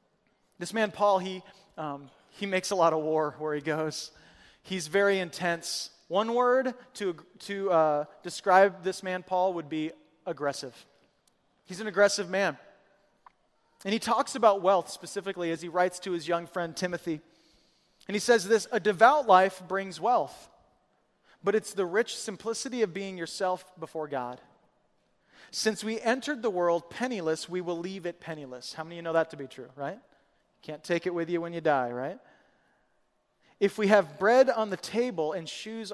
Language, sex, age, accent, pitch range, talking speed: English, male, 30-49, American, 170-220 Hz, 175 wpm